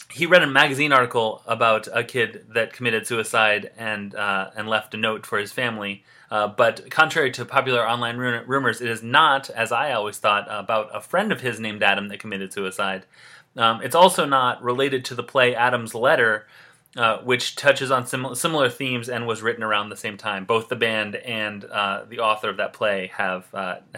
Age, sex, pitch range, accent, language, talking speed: 30-49, male, 105-125 Hz, American, English, 200 wpm